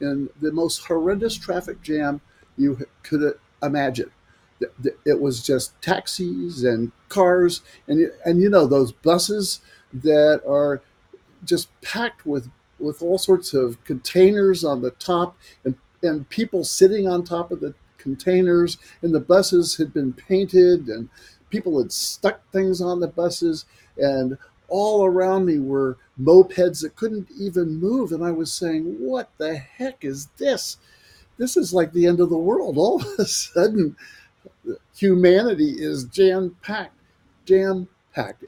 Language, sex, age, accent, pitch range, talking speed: English, male, 60-79, American, 140-185 Hz, 145 wpm